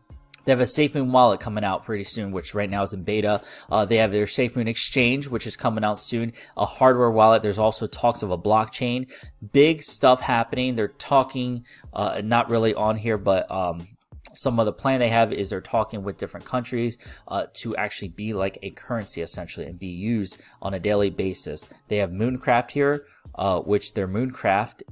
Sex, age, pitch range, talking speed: male, 20-39, 100-120 Hz, 195 wpm